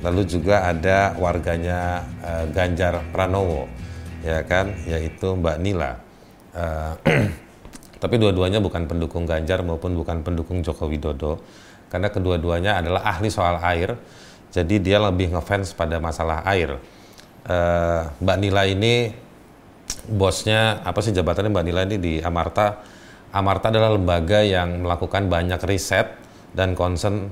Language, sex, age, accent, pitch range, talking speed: Indonesian, male, 30-49, native, 85-100 Hz, 125 wpm